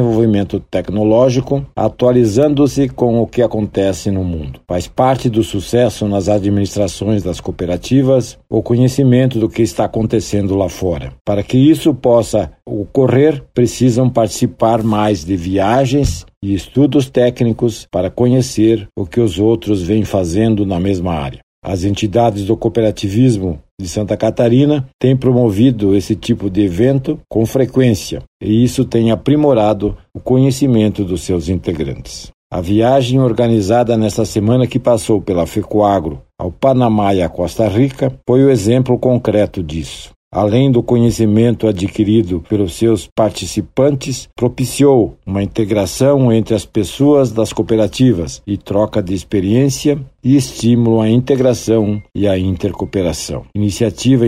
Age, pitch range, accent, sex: 60-79, 100-125 Hz, Brazilian, male